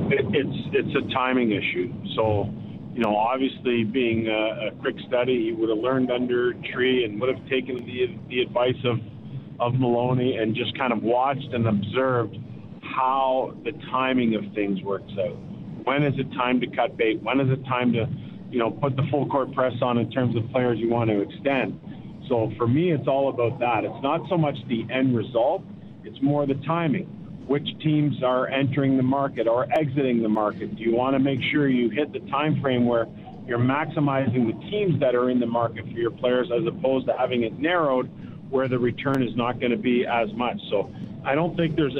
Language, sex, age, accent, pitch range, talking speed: English, male, 50-69, American, 120-140 Hz, 205 wpm